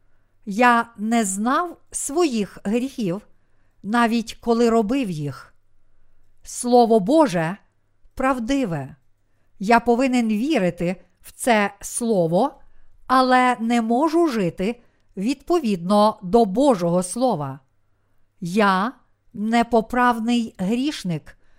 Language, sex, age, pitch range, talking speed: Ukrainian, female, 50-69, 170-245 Hz, 85 wpm